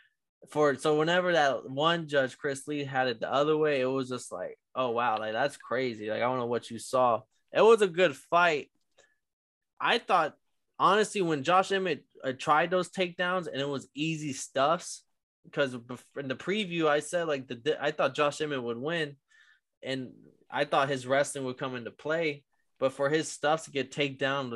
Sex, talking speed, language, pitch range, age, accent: male, 195 wpm, English, 125-150 Hz, 20-39, American